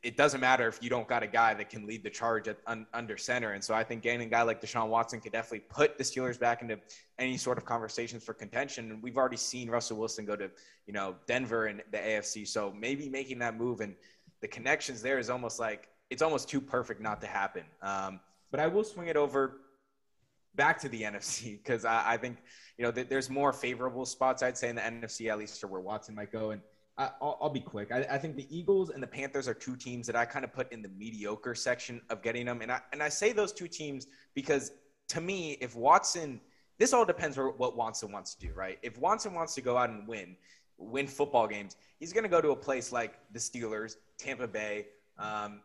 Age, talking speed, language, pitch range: 20-39, 240 wpm, English, 110-135 Hz